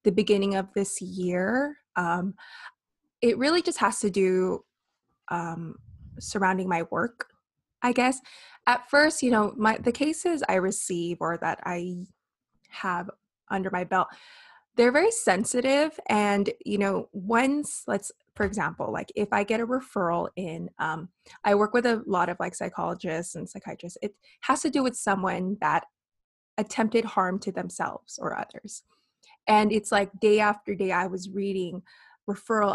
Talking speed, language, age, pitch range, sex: 155 wpm, English, 20-39, 185-230 Hz, female